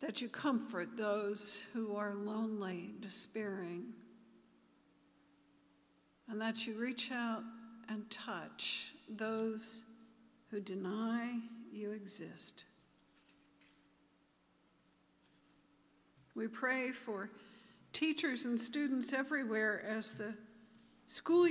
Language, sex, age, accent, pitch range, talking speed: English, female, 60-79, American, 205-230 Hz, 85 wpm